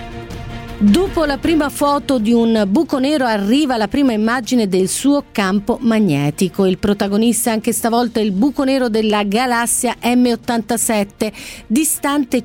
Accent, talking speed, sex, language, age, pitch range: native, 135 wpm, female, Italian, 40-59, 205-265 Hz